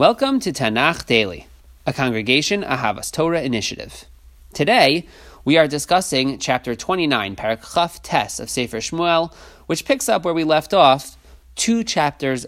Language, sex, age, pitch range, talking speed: English, male, 30-49, 115-160 Hz, 140 wpm